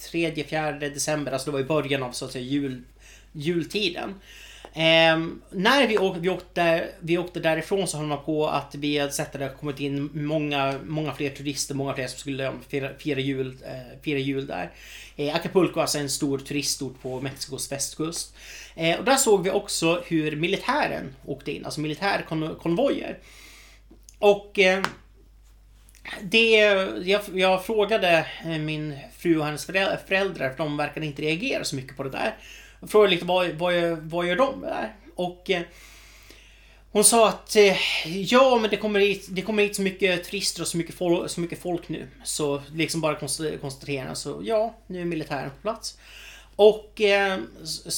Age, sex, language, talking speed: 30-49, male, Swedish, 170 wpm